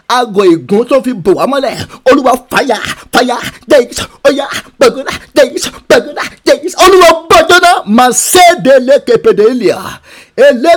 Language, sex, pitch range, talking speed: English, male, 250-295 Hz, 135 wpm